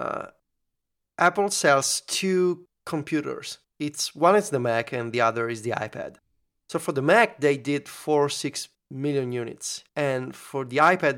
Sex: male